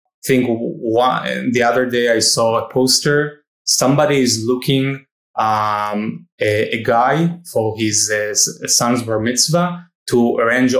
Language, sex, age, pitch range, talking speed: English, male, 20-39, 115-140 Hz, 140 wpm